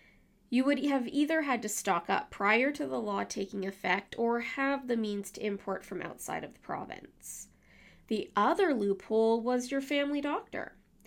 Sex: female